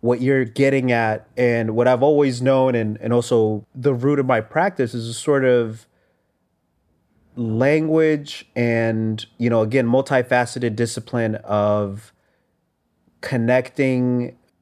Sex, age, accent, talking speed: male, 30-49, American, 125 wpm